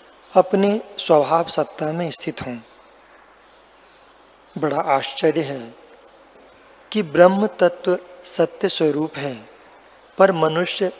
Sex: male